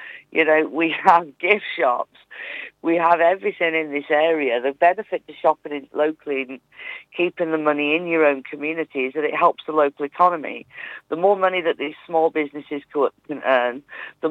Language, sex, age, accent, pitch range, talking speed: English, female, 50-69, British, 150-170 Hz, 175 wpm